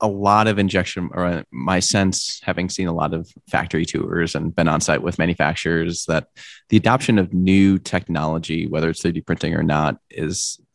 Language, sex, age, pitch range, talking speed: English, male, 20-39, 80-95 Hz, 185 wpm